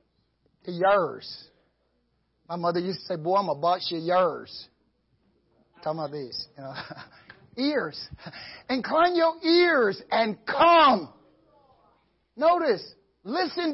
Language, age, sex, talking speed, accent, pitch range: English, 50-69, male, 110 wpm, American, 220-325 Hz